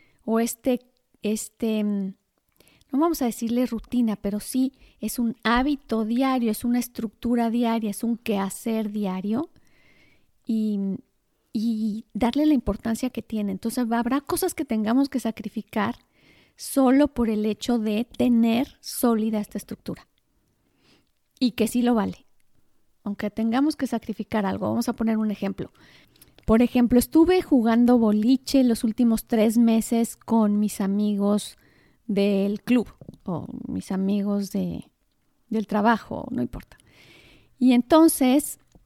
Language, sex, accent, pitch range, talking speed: Spanish, female, Mexican, 210-245 Hz, 130 wpm